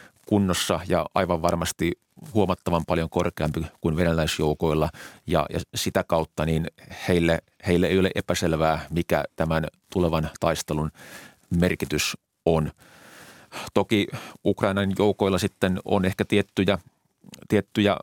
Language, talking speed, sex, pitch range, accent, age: Finnish, 100 wpm, male, 80-95 Hz, native, 30-49